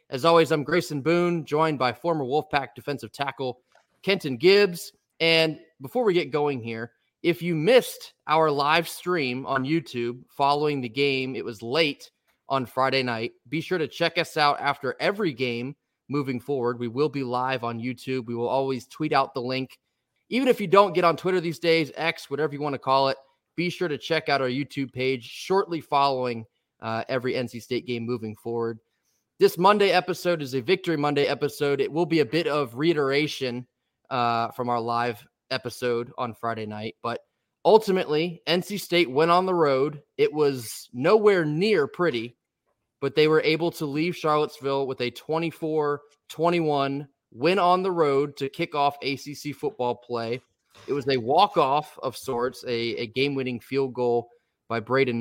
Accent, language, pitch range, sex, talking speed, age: American, English, 125-165 Hz, male, 175 wpm, 20-39